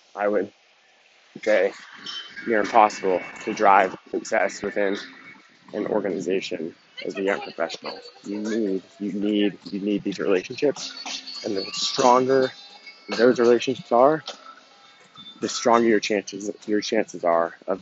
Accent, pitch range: American, 105-125 Hz